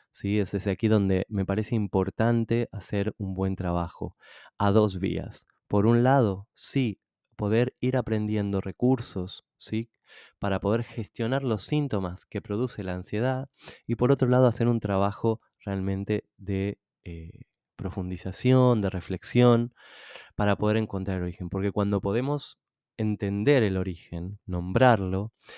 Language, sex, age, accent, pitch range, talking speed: Spanish, male, 20-39, Argentinian, 95-120 Hz, 135 wpm